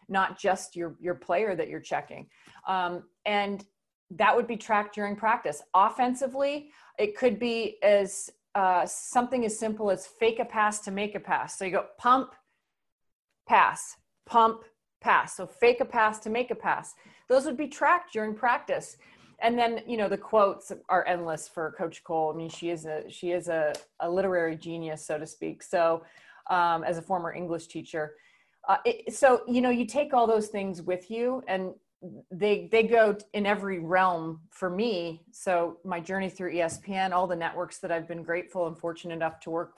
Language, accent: English, American